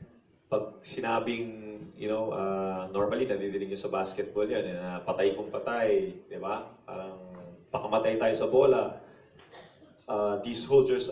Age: 20-39